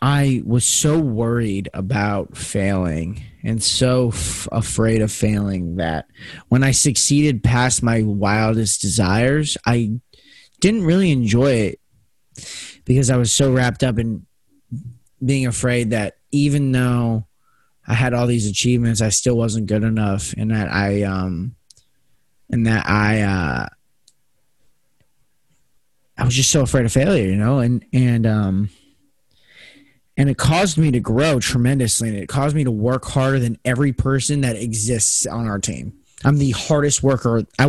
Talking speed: 150 wpm